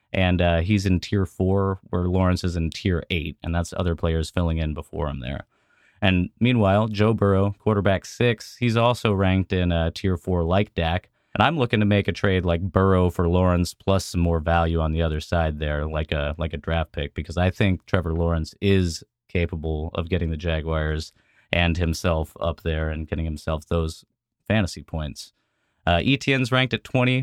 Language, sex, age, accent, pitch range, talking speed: English, male, 30-49, American, 85-110 Hz, 195 wpm